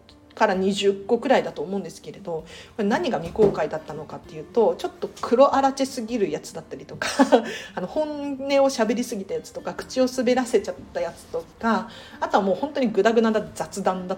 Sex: female